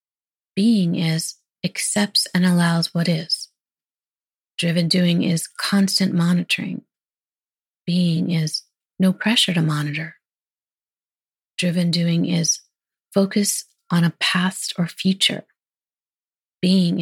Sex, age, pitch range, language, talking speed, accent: female, 30-49, 170-195 Hz, English, 100 wpm, American